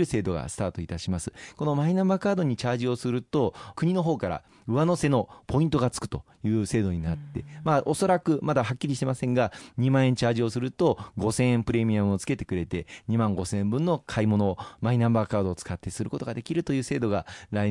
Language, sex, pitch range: Japanese, male, 95-130 Hz